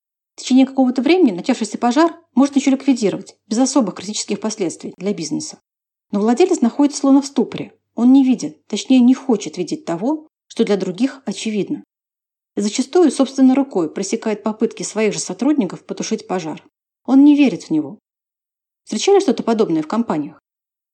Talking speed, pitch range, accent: 155 wpm, 210-275 Hz, native